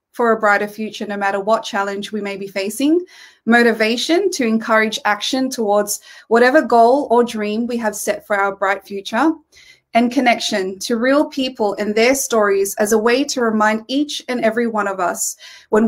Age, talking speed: 20-39, 180 wpm